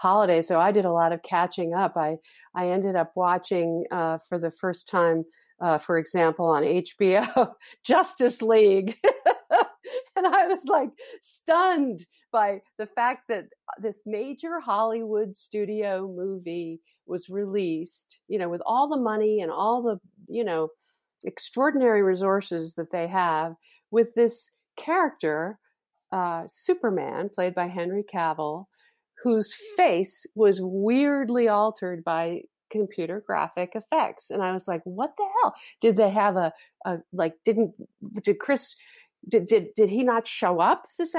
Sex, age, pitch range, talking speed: female, 50-69, 180-245 Hz, 145 wpm